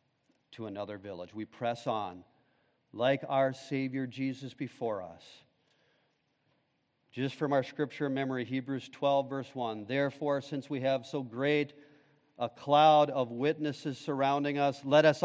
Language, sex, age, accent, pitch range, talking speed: English, male, 40-59, American, 135-180 Hz, 140 wpm